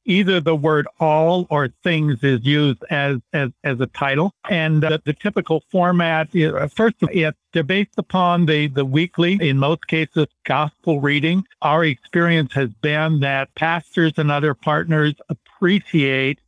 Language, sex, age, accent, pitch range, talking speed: English, male, 60-79, American, 140-170 Hz, 155 wpm